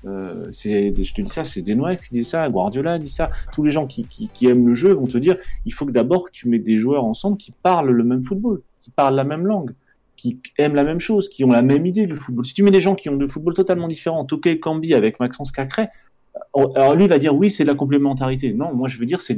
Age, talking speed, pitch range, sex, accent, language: 30-49, 275 wpm, 120-155 Hz, male, French, French